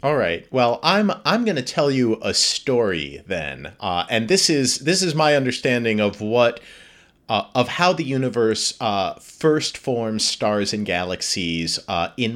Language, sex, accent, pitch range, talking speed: English, male, American, 95-125 Hz, 170 wpm